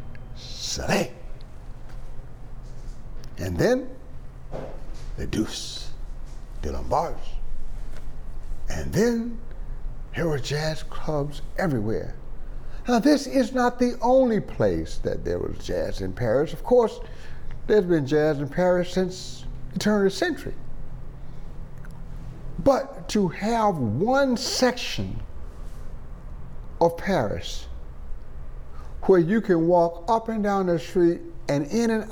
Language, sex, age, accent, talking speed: English, male, 60-79, American, 110 wpm